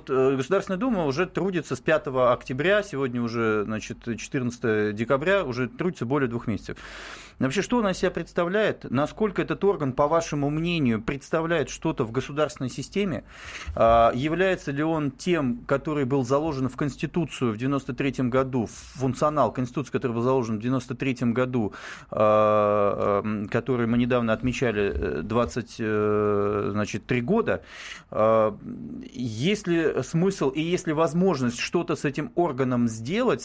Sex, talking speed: male, 140 wpm